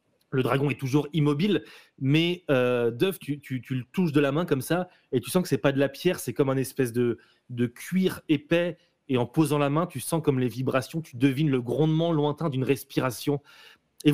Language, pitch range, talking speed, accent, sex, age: French, 140-175 Hz, 230 wpm, French, male, 30-49